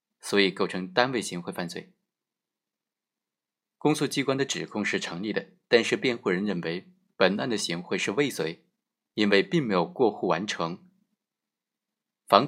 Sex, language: male, Chinese